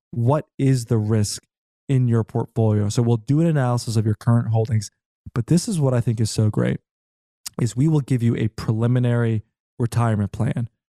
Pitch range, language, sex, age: 115-140 Hz, English, male, 20-39